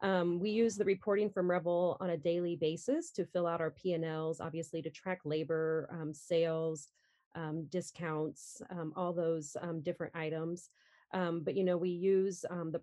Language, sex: English, female